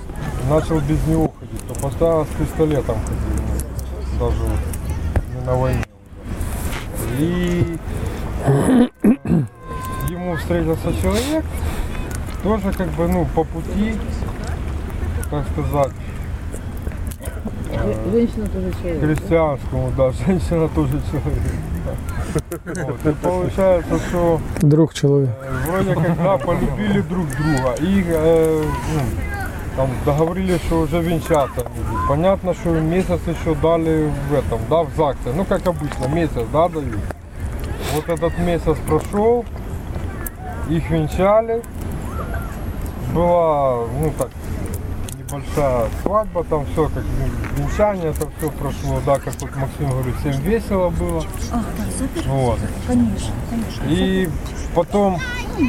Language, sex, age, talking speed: English, male, 20-39, 110 wpm